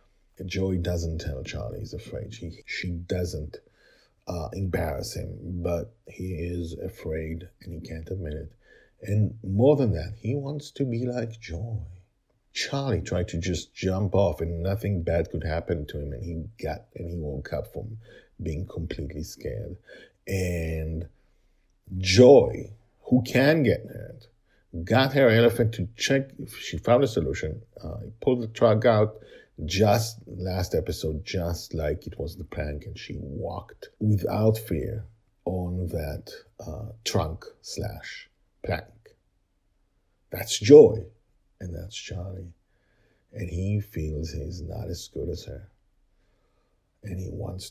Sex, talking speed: male, 145 wpm